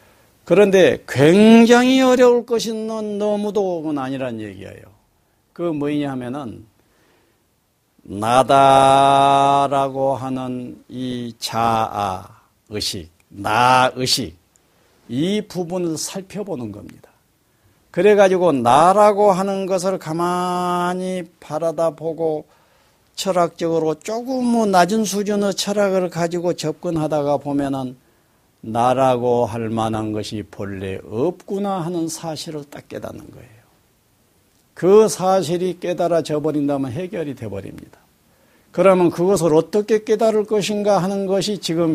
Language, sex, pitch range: Korean, male, 125-190 Hz